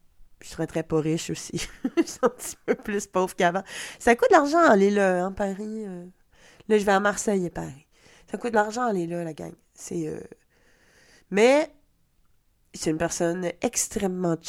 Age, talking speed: 20-39, 180 wpm